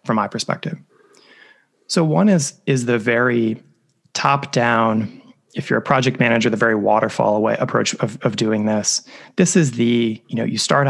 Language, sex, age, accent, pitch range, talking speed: English, male, 20-39, American, 110-140 Hz, 175 wpm